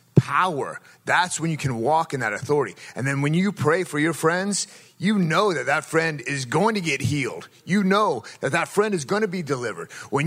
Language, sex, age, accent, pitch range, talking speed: English, male, 30-49, American, 150-200 Hz, 220 wpm